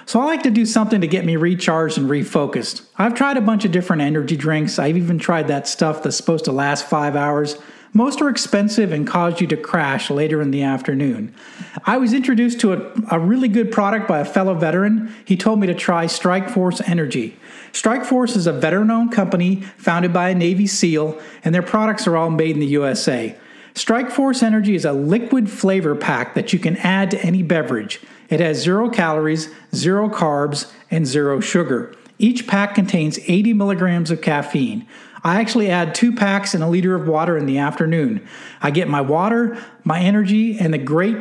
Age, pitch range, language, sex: 50-69, 160-225 Hz, English, male